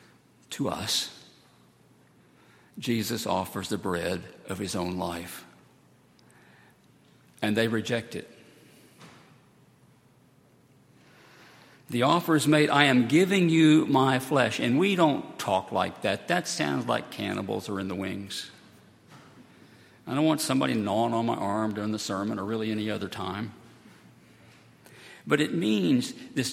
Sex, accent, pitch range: male, American, 105-150 Hz